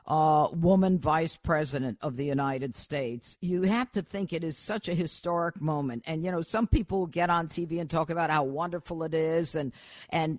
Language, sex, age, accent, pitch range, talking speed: English, female, 50-69, American, 170-235 Hz, 210 wpm